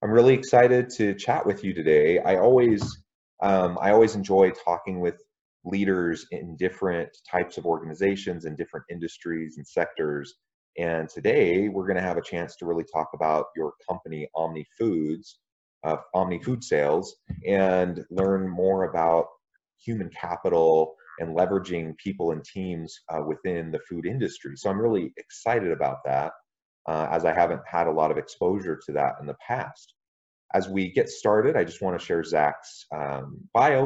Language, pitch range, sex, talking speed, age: English, 80-105 Hz, male, 170 wpm, 30-49